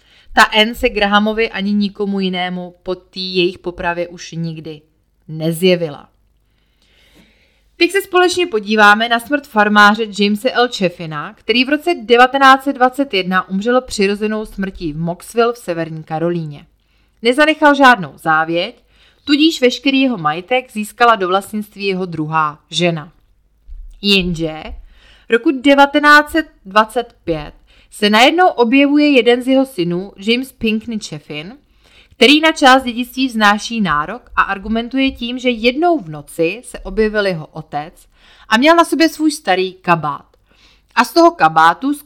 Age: 30-49